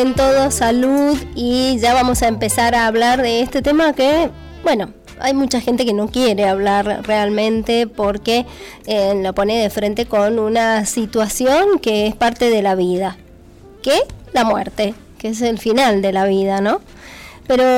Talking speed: 170 wpm